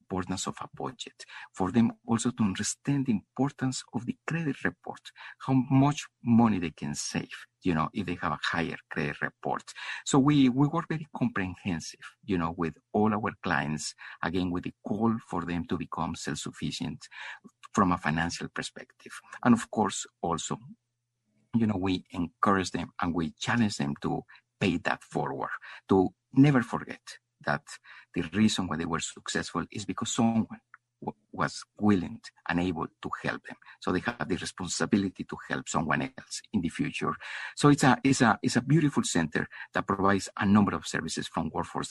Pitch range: 90-120 Hz